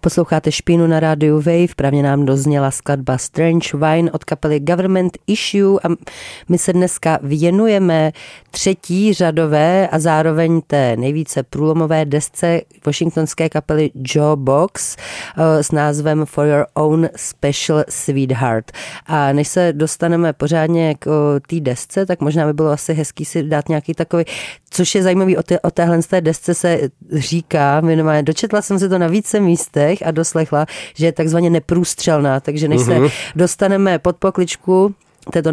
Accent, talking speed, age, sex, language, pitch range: native, 145 wpm, 40-59, female, Czech, 155-180 Hz